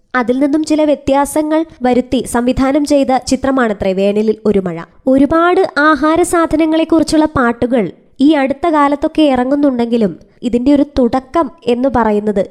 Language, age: Malayalam, 20-39